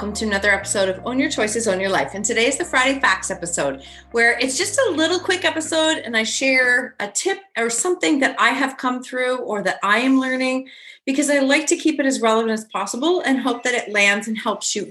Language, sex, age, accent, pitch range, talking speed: English, female, 30-49, American, 215-275 Hz, 240 wpm